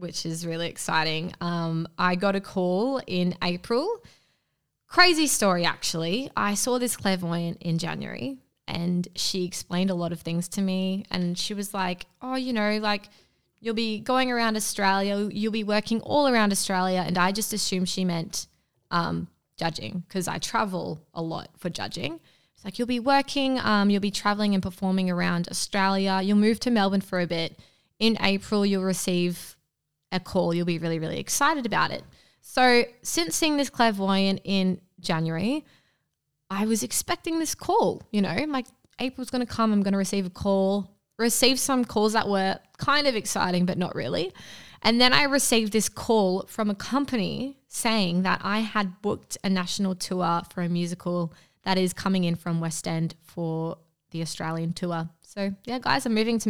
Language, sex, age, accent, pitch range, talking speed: English, female, 20-39, Australian, 175-225 Hz, 175 wpm